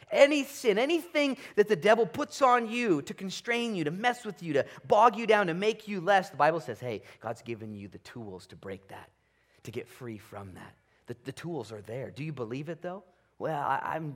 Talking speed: 225 wpm